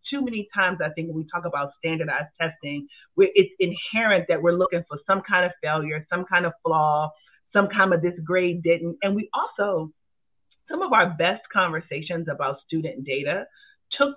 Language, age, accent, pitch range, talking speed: English, 30-49, American, 155-195 Hz, 180 wpm